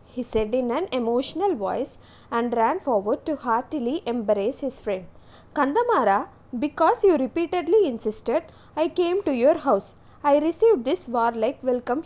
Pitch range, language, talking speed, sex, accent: 235-320 Hz, English, 145 wpm, female, Indian